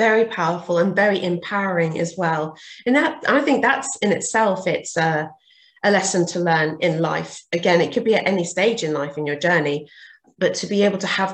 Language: English